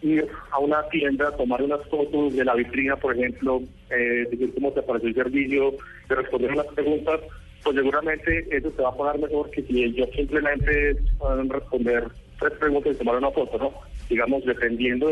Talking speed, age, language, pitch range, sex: 185 wpm, 40-59, Spanish, 120-150 Hz, male